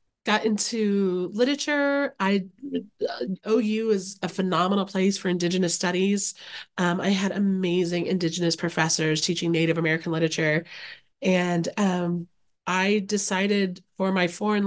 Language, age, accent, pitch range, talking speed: English, 30-49, American, 175-215 Hz, 120 wpm